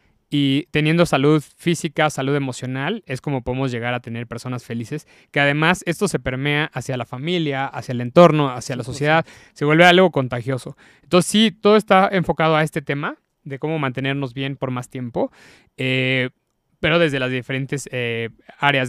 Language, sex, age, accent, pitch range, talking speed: Spanish, male, 20-39, Mexican, 125-150 Hz, 170 wpm